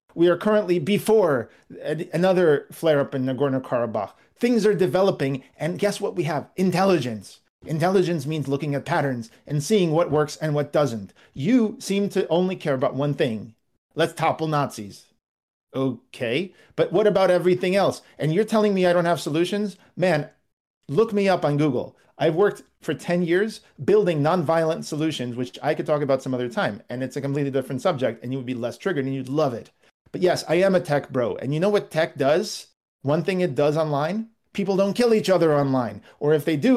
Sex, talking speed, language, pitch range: male, 195 wpm, English, 140-190 Hz